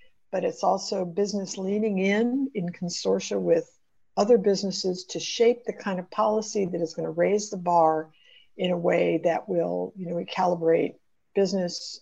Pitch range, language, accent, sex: 185-230 Hz, English, American, female